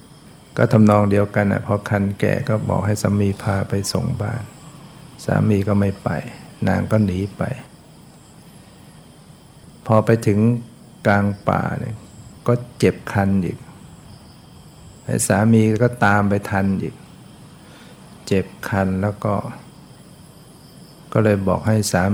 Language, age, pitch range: Thai, 60-79, 100-125 Hz